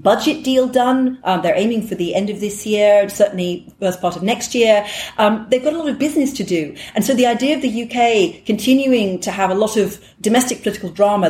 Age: 40-59